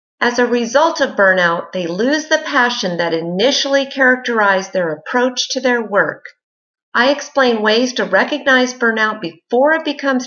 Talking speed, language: 150 wpm, English